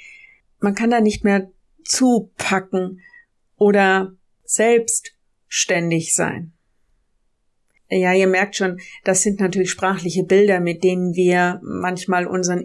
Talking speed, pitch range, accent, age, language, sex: 110 wpm, 185-230 Hz, German, 50-69, German, female